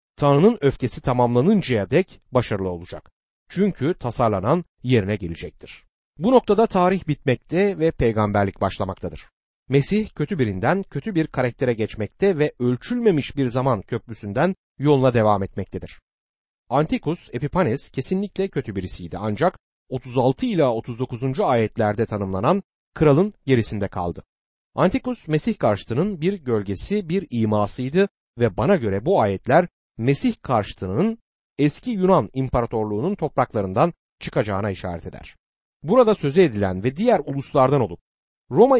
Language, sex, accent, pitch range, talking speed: Turkish, male, native, 110-180 Hz, 115 wpm